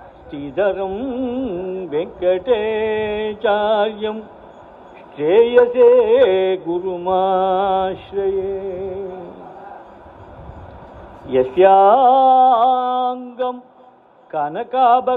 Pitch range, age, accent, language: 185-260 Hz, 50-69, native, Tamil